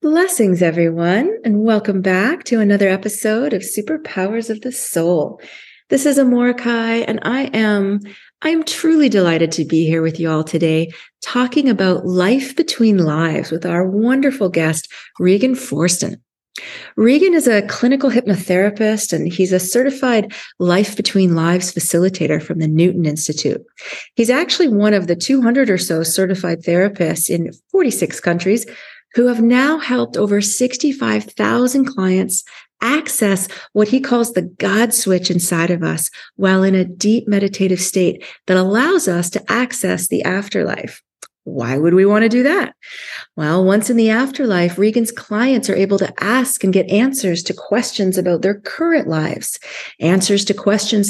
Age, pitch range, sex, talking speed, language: 30-49, 180-245 Hz, female, 155 wpm, English